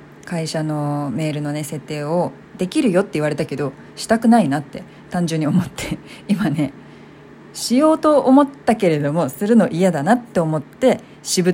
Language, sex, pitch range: Japanese, female, 150-210 Hz